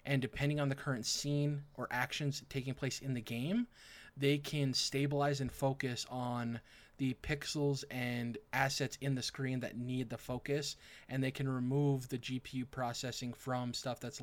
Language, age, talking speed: English, 20-39, 170 wpm